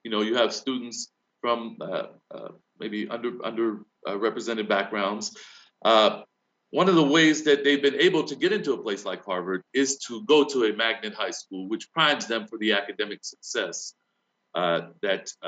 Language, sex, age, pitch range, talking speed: English, male, 40-59, 105-125 Hz, 180 wpm